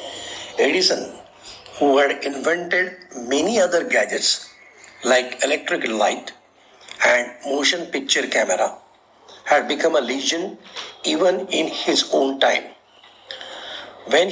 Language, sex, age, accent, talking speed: Marathi, male, 60-79, native, 100 wpm